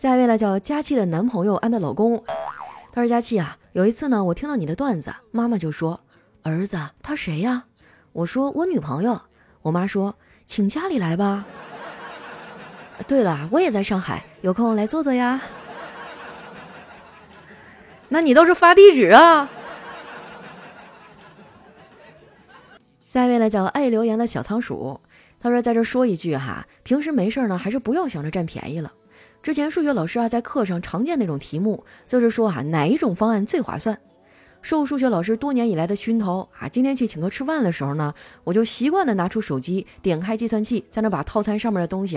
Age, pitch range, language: 20-39, 180-255 Hz, Chinese